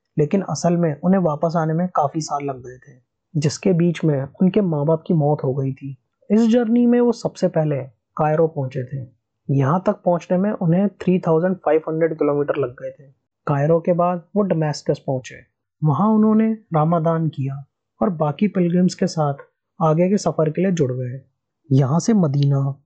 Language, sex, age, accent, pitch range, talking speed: Hindi, male, 20-39, native, 140-185 Hz, 175 wpm